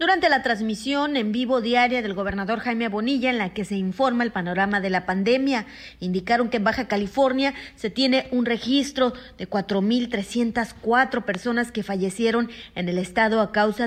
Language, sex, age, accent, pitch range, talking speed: Spanish, female, 30-49, Mexican, 200-250 Hz, 170 wpm